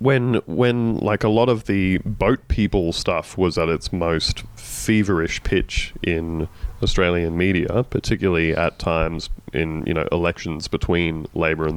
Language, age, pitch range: English, 30-49, 85-115 Hz